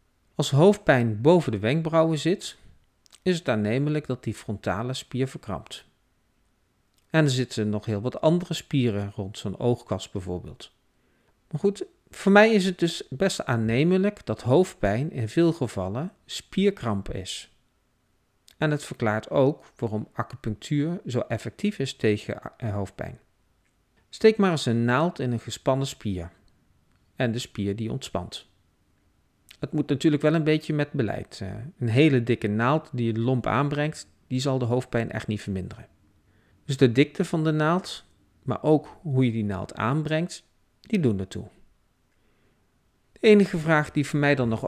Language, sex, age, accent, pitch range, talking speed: Dutch, male, 50-69, Dutch, 105-155 Hz, 155 wpm